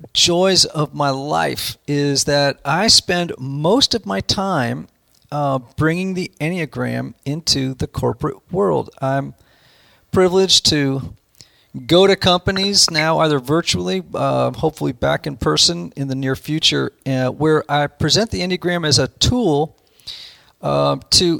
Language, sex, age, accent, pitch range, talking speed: English, male, 40-59, American, 135-180 Hz, 135 wpm